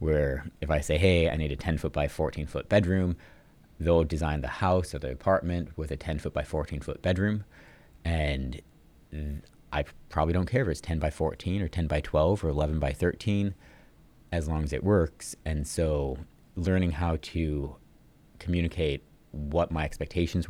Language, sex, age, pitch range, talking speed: English, male, 30-49, 75-85 Hz, 180 wpm